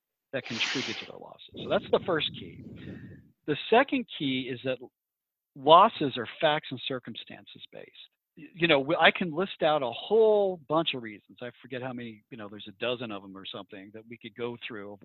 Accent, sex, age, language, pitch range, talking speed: American, male, 50-69, English, 125-175 Hz, 205 wpm